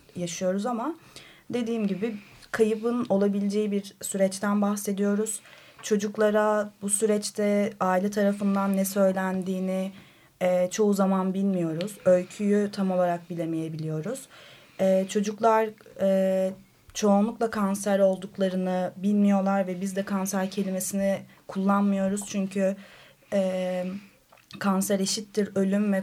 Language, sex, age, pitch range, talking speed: Turkish, female, 30-49, 190-210 Hz, 100 wpm